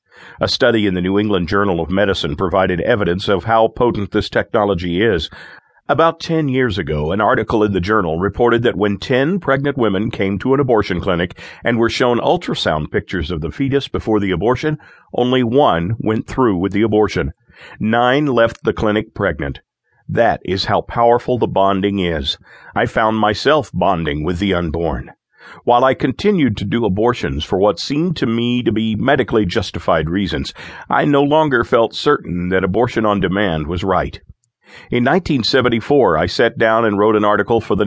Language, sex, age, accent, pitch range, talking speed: English, male, 50-69, American, 100-120 Hz, 175 wpm